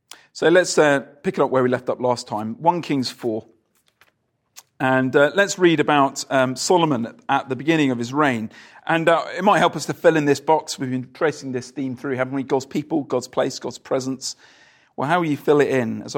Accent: British